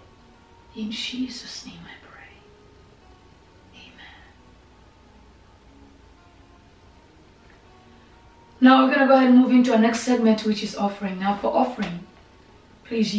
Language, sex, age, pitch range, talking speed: English, female, 30-49, 200-230 Hz, 110 wpm